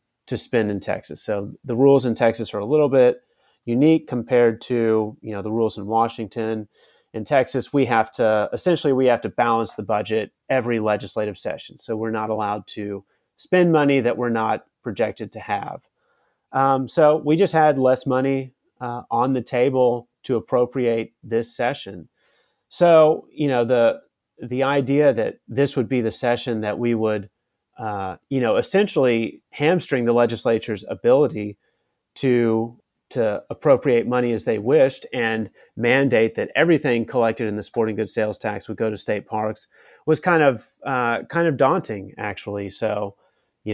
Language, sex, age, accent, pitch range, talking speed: English, male, 30-49, American, 110-130 Hz, 165 wpm